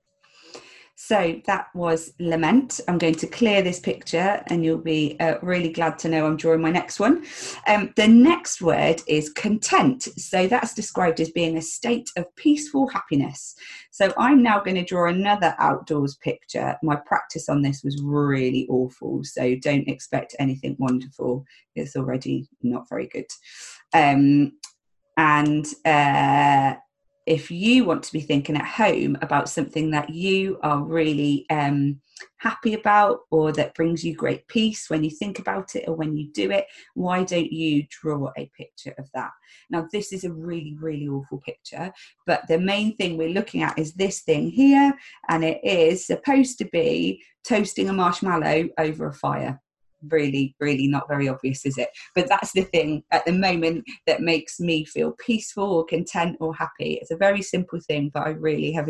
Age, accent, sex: 30-49, British, female